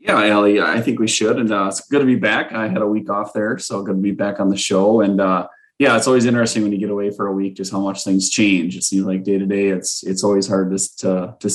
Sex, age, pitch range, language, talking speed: male, 20-39, 100-115 Hz, English, 300 wpm